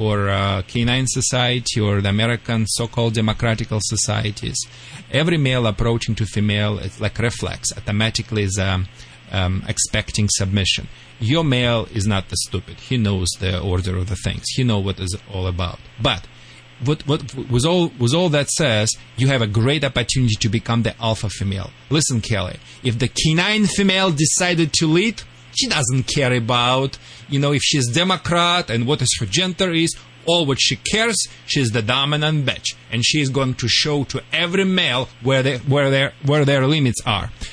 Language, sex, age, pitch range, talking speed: English, male, 40-59, 110-150 Hz, 175 wpm